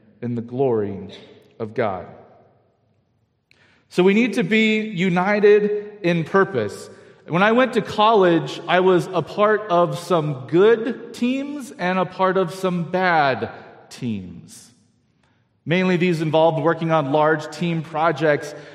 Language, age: English, 40-59